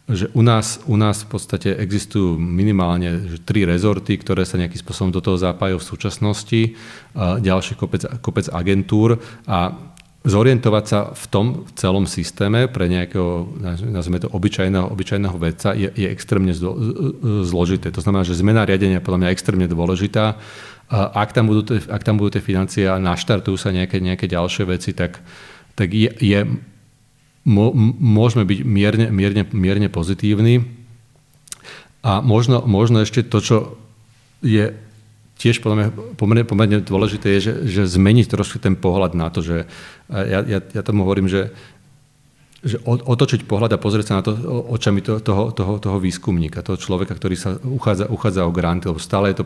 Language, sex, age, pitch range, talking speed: Slovak, male, 40-59, 95-115 Hz, 160 wpm